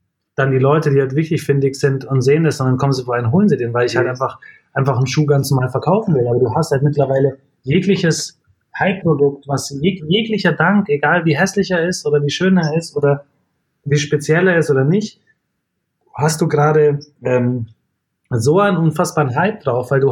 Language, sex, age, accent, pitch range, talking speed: German, male, 30-49, German, 130-170 Hz, 210 wpm